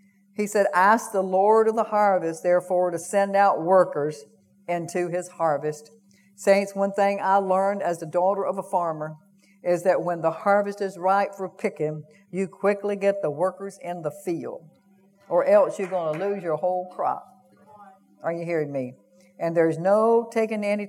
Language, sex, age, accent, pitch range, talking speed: English, female, 60-79, American, 180-230 Hz, 180 wpm